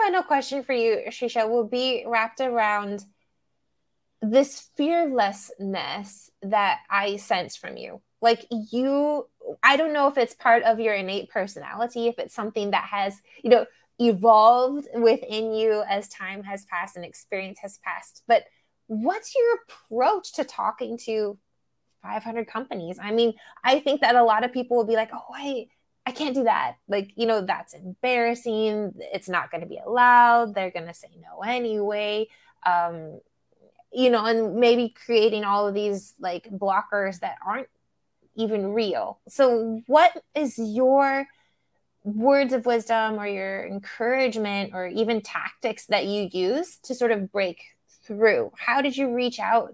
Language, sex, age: English, female, 20-39